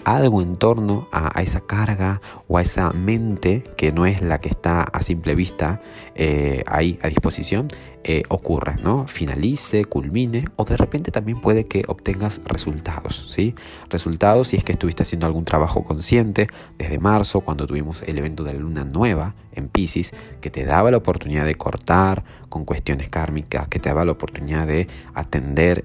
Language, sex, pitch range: Spanish, male, 75-100 Hz